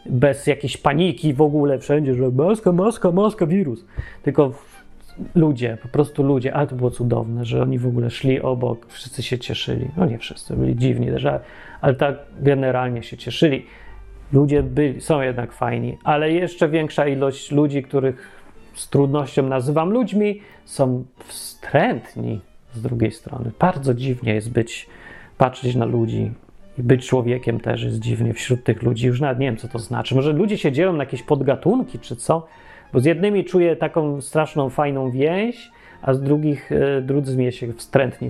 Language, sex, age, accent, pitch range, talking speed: Polish, male, 40-59, native, 125-165 Hz, 165 wpm